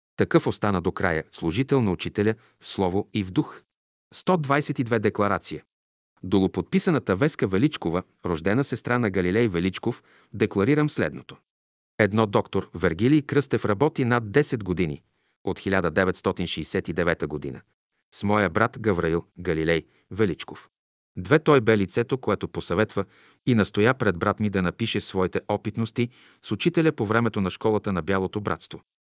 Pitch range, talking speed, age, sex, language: 95-125 Hz, 135 wpm, 40-59, male, Bulgarian